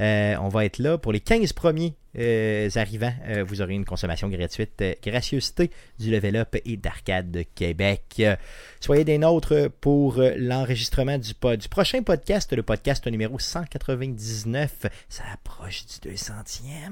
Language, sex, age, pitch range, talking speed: French, male, 30-49, 110-150 Hz, 165 wpm